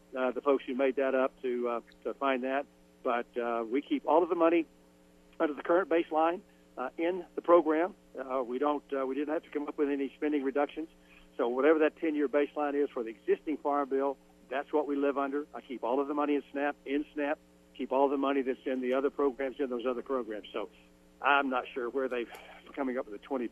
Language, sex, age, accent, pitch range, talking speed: English, male, 50-69, American, 120-145 Hz, 235 wpm